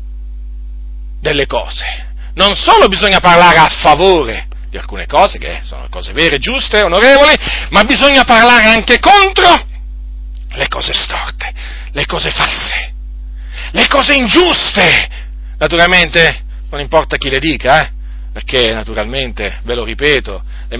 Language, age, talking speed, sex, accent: Italian, 40-59, 125 wpm, male, native